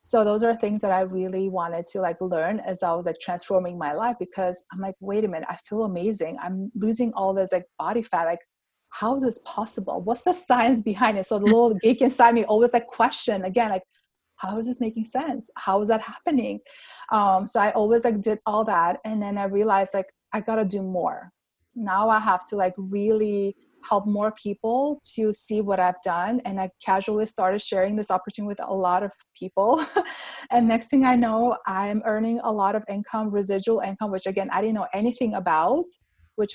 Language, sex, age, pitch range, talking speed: English, female, 20-39, 190-230 Hz, 210 wpm